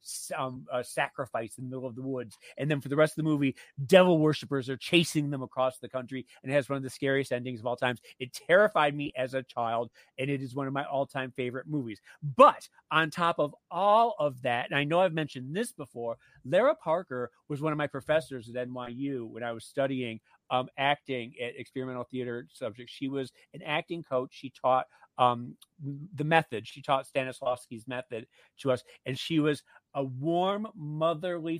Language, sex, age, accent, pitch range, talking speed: English, male, 40-59, American, 130-160 Hz, 200 wpm